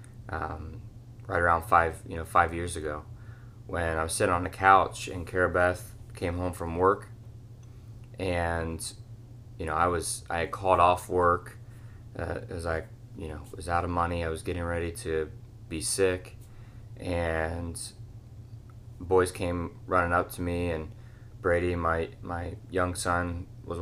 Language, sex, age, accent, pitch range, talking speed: English, male, 20-39, American, 85-115 Hz, 155 wpm